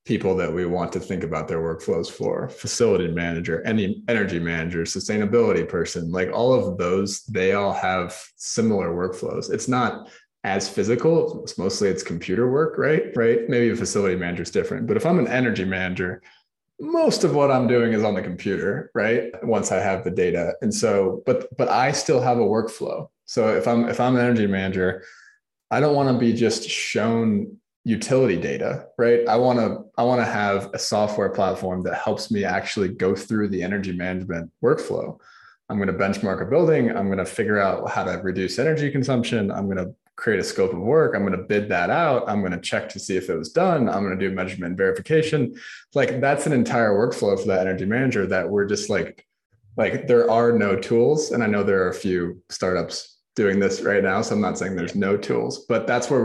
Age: 20-39